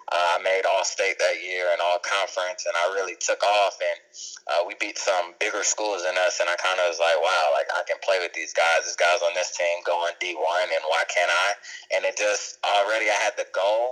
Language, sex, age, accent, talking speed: English, male, 20-39, American, 235 wpm